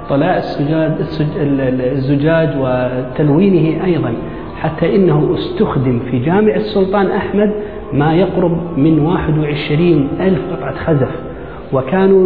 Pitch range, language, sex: 145-180 Hz, Arabic, male